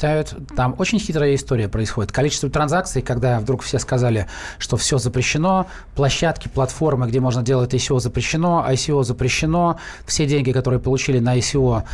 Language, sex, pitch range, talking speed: Russian, male, 130-165 Hz, 145 wpm